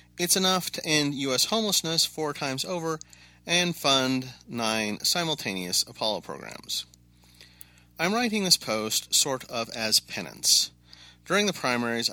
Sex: male